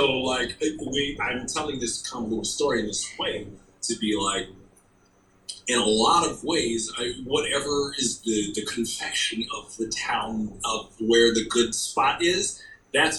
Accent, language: American, English